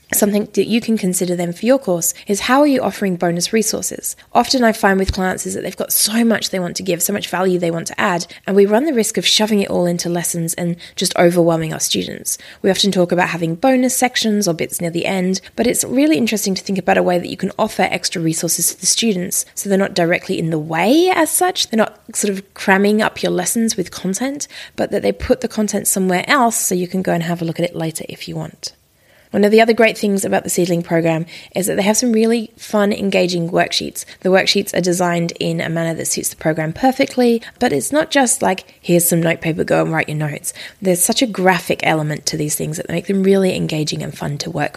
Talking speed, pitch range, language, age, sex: 250 wpm, 170-220 Hz, English, 20-39, female